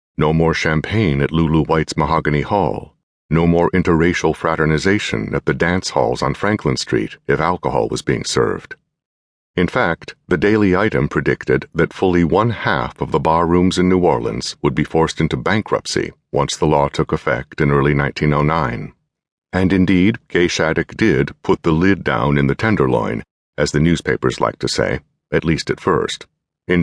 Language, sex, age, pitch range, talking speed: English, male, 60-79, 75-95 Hz, 170 wpm